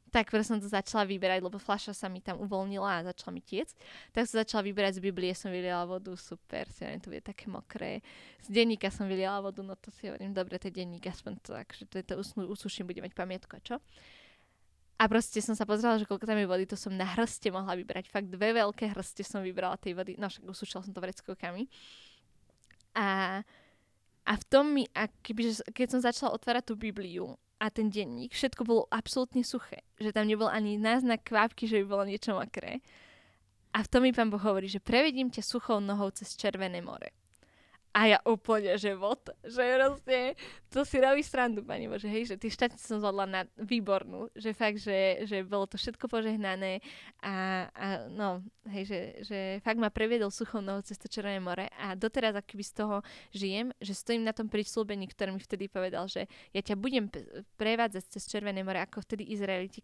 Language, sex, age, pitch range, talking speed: Slovak, female, 10-29, 195-225 Hz, 200 wpm